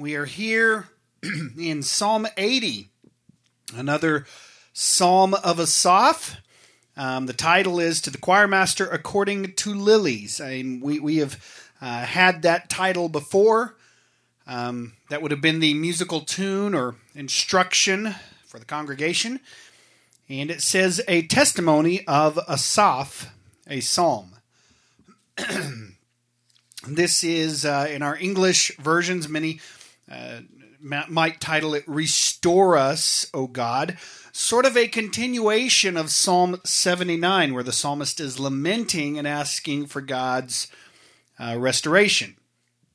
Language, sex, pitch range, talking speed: English, male, 140-190 Hz, 120 wpm